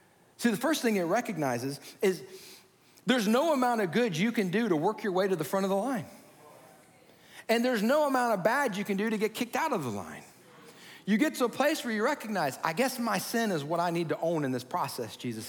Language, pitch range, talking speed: English, 140-210 Hz, 245 wpm